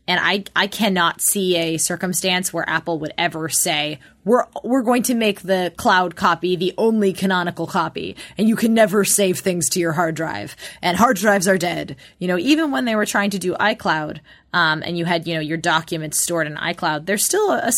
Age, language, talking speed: 20-39, English, 215 wpm